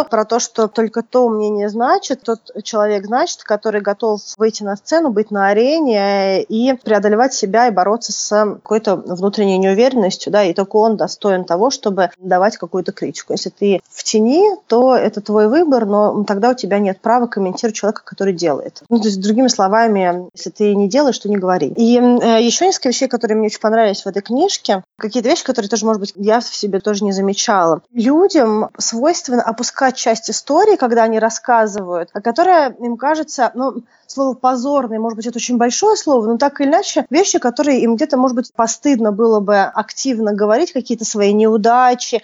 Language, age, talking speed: Russian, 20-39, 185 wpm